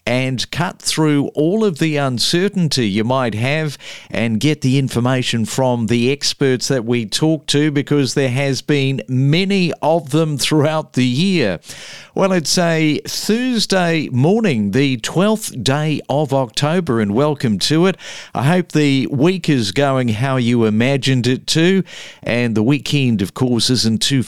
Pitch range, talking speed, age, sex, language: 125-160 Hz, 155 wpm, 50-69, male, English